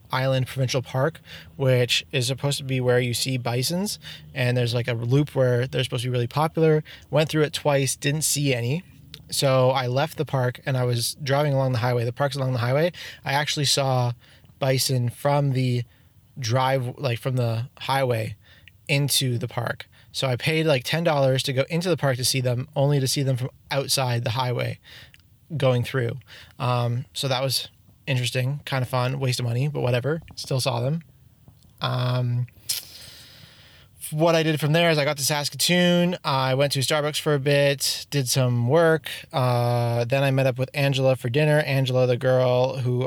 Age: 20-39